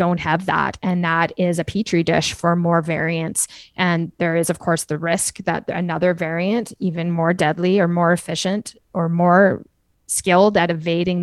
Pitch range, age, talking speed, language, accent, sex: 165-185 Hz, 20-39, 175 wpm, English, American, female